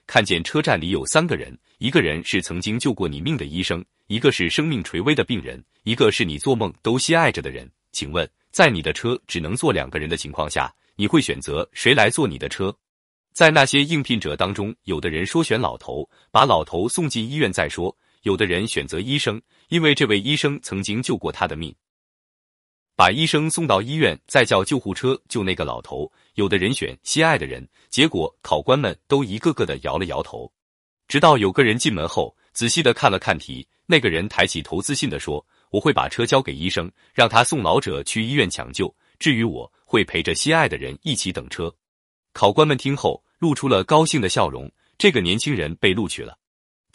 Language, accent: Chinese, native